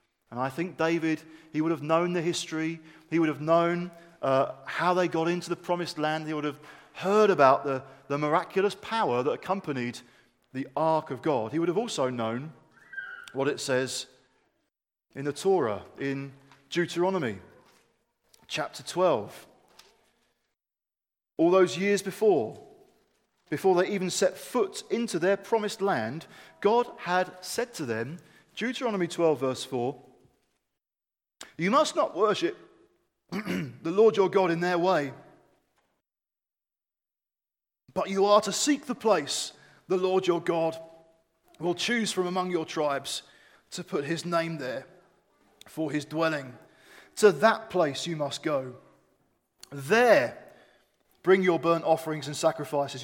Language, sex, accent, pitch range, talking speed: English, male, British, 150-185 Hz, 140 wpm